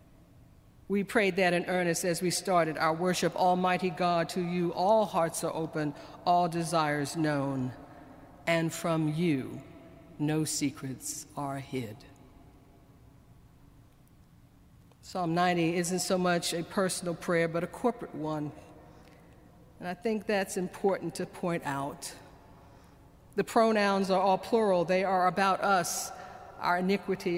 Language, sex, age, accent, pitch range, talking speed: English, female, 50-69, American, 155-190 Hz, 130 wpm